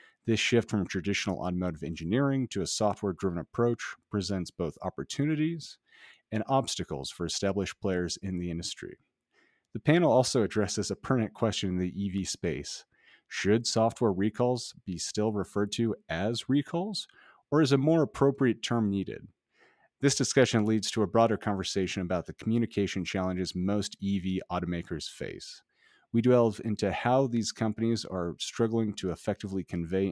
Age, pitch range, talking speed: 40-59, 95-115 Hz, 145 wpm